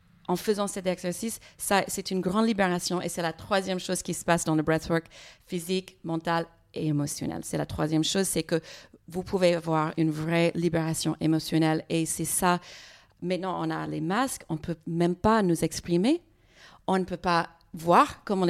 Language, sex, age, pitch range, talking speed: French, female, 40-59, 165-195 Hz, 190 wpm